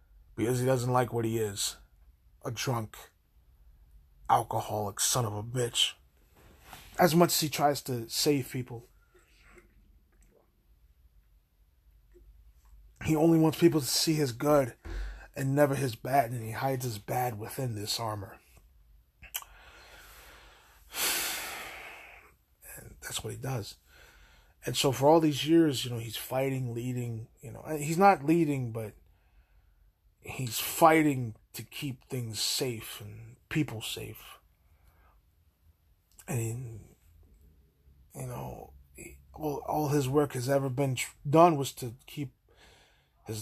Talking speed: 125 wpm